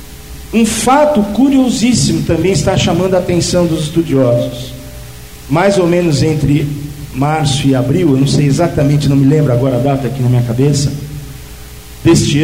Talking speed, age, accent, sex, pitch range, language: 155 wpm, 50-69, Brazilian, male, 120-155 Hz, Portuguese